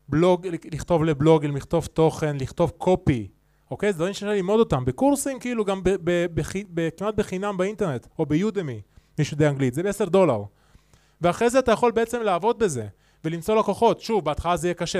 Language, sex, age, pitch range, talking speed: Hebrew, male, 20-39, 145-185 Hz, 180 wpm